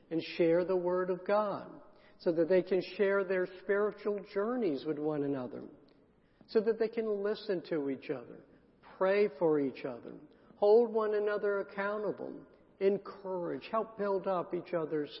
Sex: male